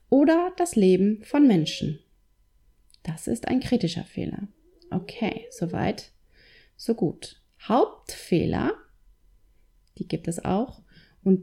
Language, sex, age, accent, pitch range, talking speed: German, female, 30-49, German, 180-240 Hz, 105 wpm